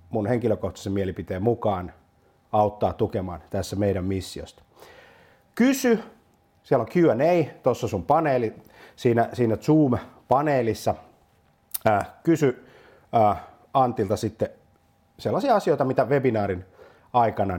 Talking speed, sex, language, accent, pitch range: 90 wpm, male, Finnish, native, 95-125 Hz